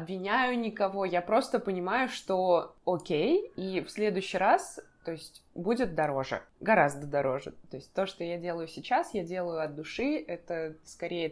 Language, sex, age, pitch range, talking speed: Russian, female, 20-39, 165-200 Hz, 165 wpm